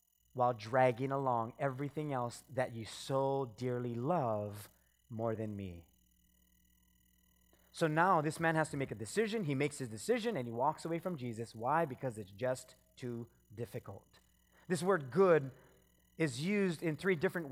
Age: 30-49